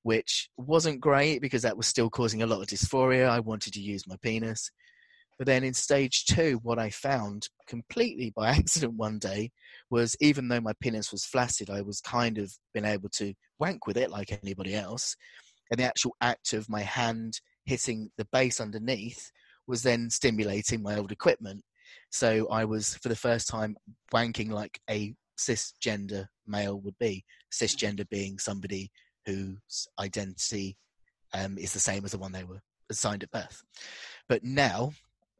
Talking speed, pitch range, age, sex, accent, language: 170 wpm, 105-125 Hz, 30-49, male, British, English